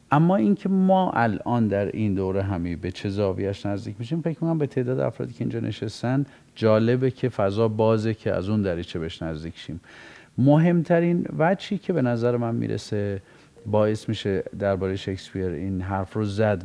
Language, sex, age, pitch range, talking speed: Persian, male, 40-59, 95-130 Hz, 160 wpm